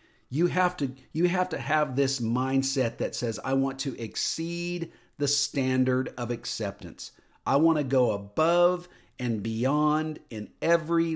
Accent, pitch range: American, 115-145 Hz